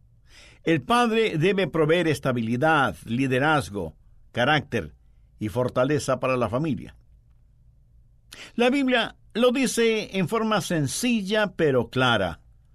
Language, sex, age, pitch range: English, male, 60-79, 120-180 Hz